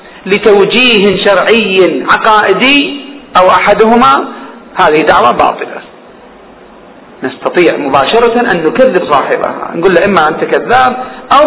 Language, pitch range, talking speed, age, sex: Arabic, 190-250 Hz, 95 wpm, 40-59, male